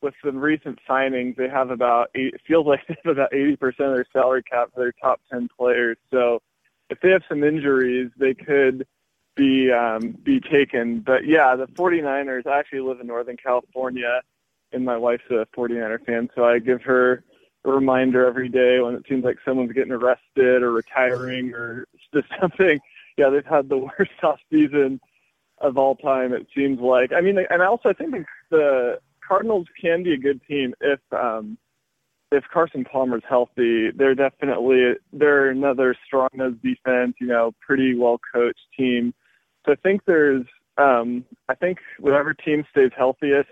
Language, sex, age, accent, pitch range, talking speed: English, male, 20-39, American, 125-140 Hz, 180 wpm